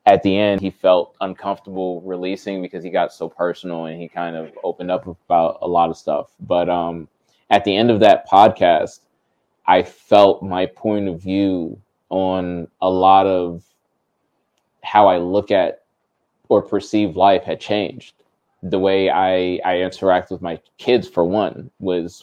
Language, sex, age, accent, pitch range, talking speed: English, male, 20-39, American, 85-95 Hz, 165 wpm